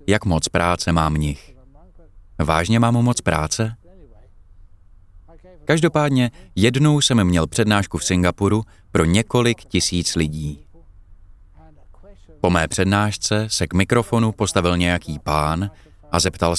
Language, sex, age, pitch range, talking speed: Czech, male, 30-49, 85-110 Hz, 110 wpm